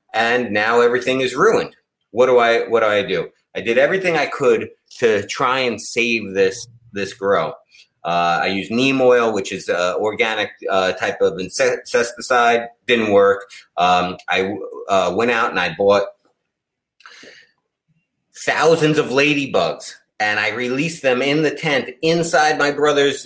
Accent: American